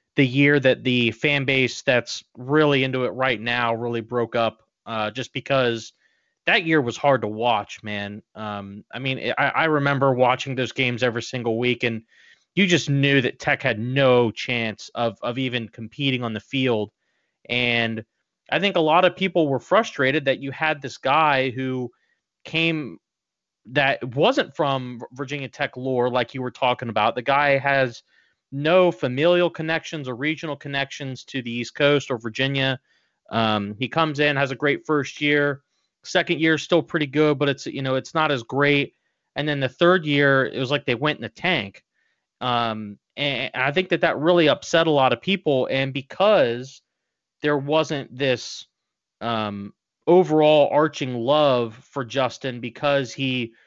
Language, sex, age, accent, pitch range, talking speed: English, male, 30-49, American, 120-145 Hz, 175 wpm